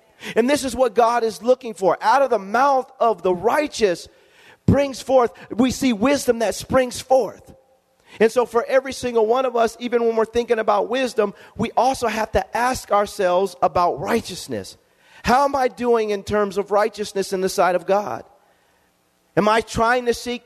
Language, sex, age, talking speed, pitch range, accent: English, male, 40-59, 185 wpm, 160-230 Hz, American